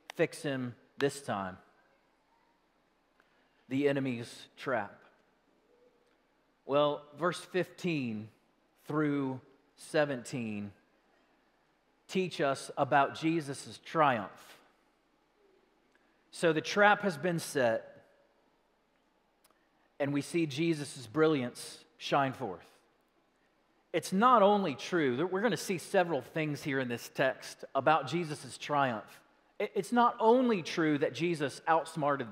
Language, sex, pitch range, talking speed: English, male, 140-200 Hz, 100 wpm